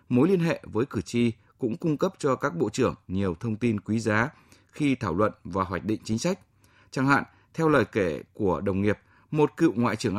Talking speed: 225 wpm